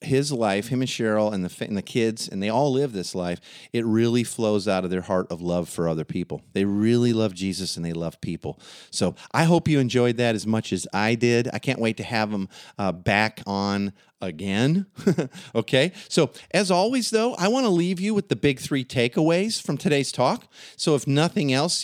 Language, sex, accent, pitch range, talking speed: English, male, American, 105-150 Hz, 215 wpm